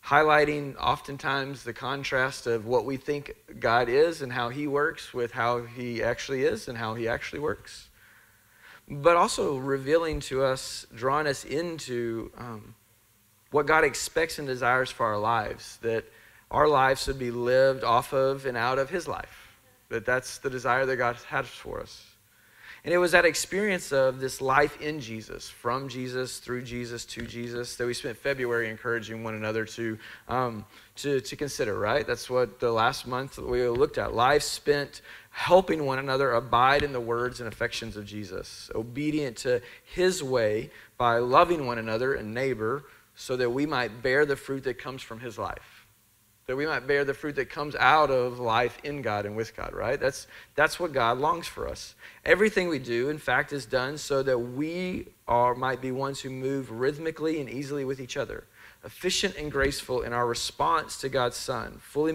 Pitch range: 120-145 Hz